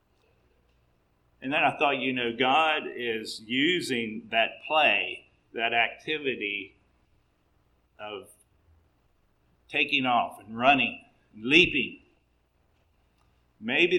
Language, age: English, 50-69